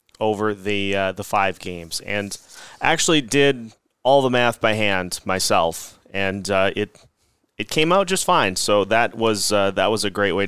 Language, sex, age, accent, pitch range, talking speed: English, male, 30-49, American, 95-115 Hz, 185 wpm